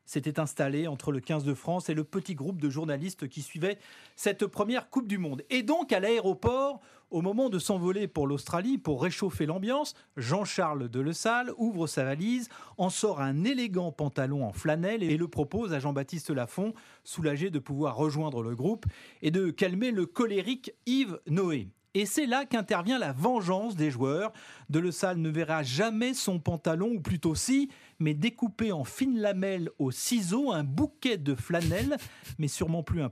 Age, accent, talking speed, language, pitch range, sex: 40-59, French, 180 wpm, French, 150-215 Hz, male